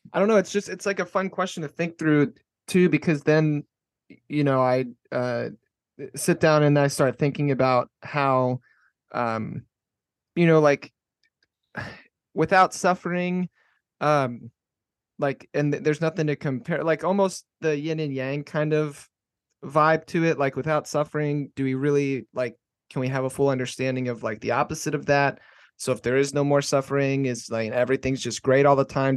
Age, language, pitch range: 30-49, English, 125-150 Hz